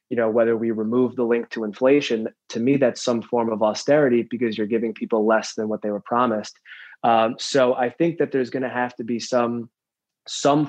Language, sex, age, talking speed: English, male, 20-39, 220 wpm